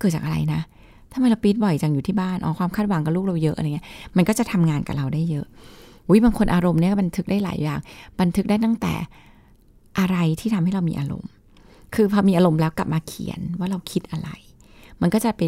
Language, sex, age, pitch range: Thai, female, 20-39, 155-195 Hz